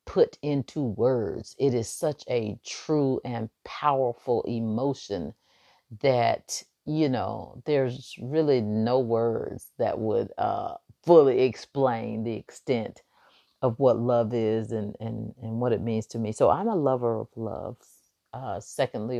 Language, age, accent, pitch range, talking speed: English, 40-59, American, 115-135 Hz, 140 wpm